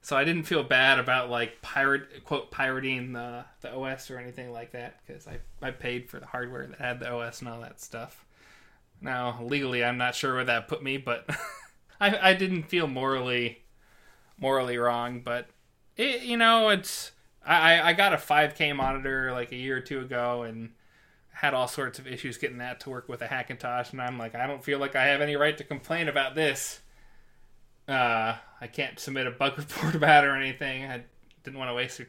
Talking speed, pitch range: 210 wpm, 120-140 Hz